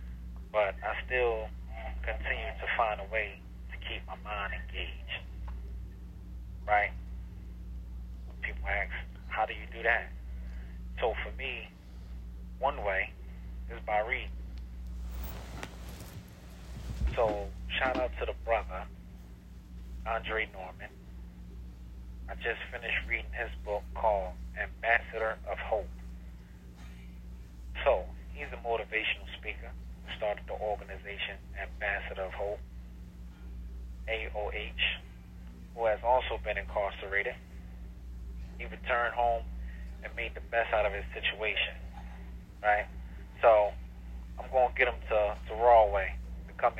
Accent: American